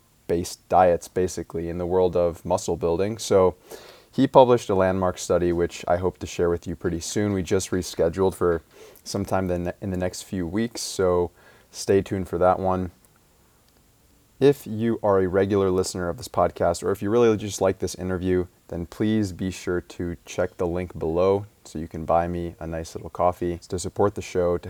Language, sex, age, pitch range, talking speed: English, male, 20-39, 85-100 Hz, 195 wpm